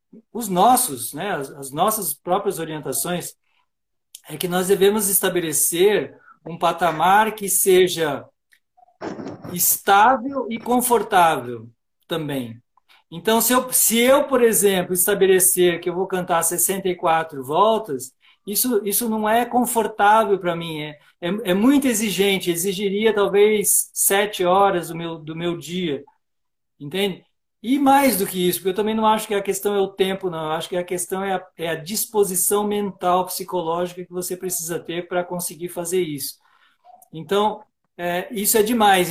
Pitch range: 175-215 Hz